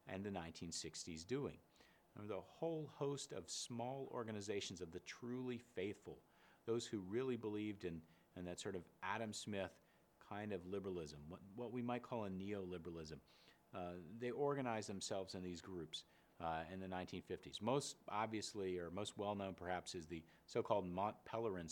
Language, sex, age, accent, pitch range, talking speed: English, male, 40-59, American, 85-110 Hz, 155 wpm